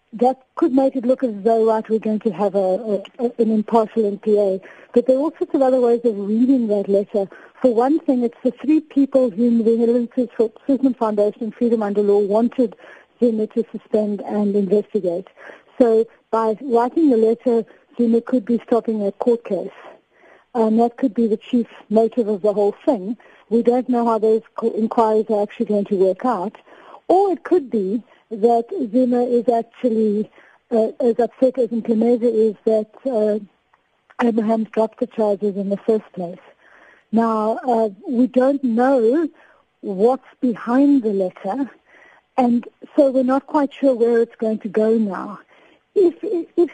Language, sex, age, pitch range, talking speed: English, female, 50-69, 220-255 Hz, 170 wpm